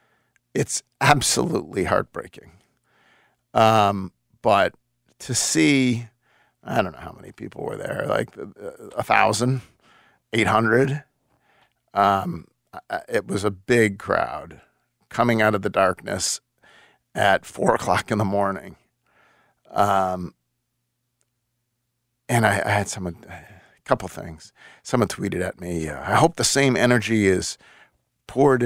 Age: 50-69